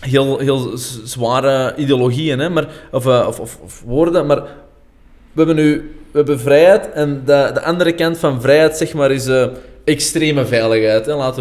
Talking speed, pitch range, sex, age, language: 180 wpm, 130-165 Hz, male, 20-39, Dutch